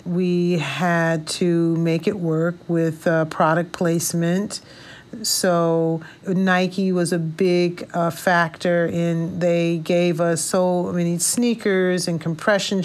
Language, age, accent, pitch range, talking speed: English, 40-59, American, 170-200 Hz, 120 wpm